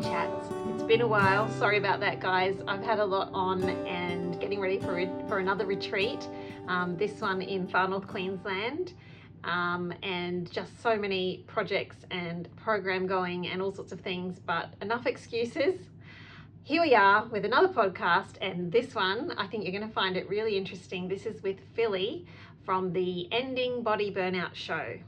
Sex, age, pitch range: female, 30-49, 175-215 Hz